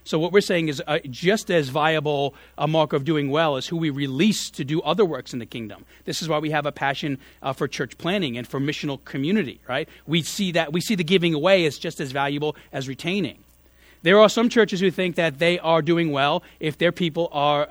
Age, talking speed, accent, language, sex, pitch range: 40-59, 235 wpm, American, English, male, 140-170 Hz